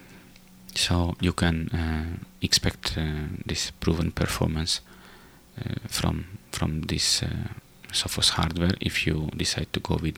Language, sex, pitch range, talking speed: English, male, 80-95 Hz, 130 wpm